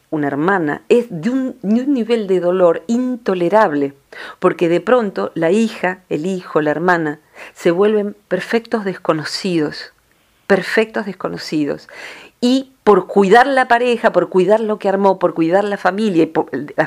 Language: Spanish